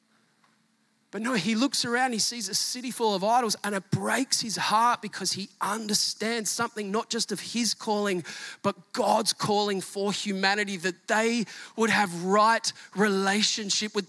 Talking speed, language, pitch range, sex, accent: 160 wpm, English, 195-230 Hz, male, Australian